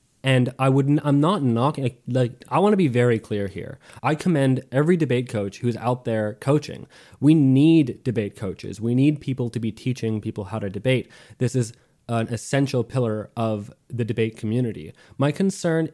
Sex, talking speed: male, 175 wpm